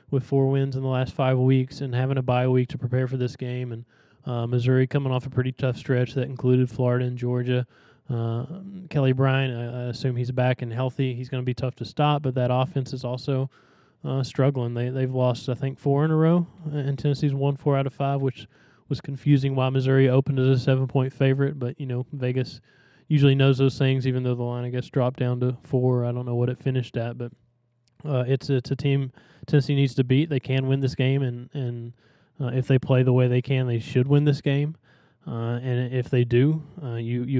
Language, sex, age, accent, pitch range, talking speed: English, male, 20-39, American, 125-135 Hz, 235 wpm